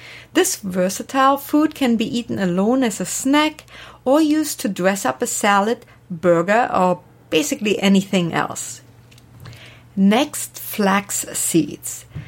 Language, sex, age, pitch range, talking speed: English, female, 50-69, 175-250 Hz, 120 wpm